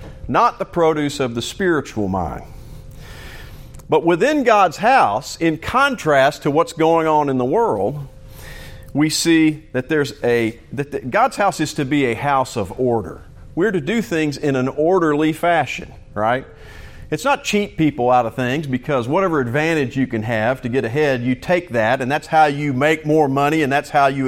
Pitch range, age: 130-170 Hz, 50-69